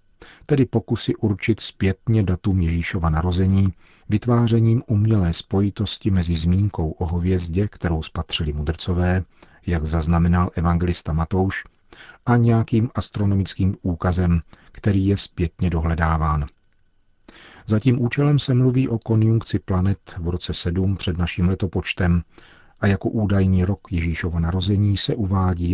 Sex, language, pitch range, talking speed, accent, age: male, Czech, 85-105 Hz, 120 wpm, native, 40-59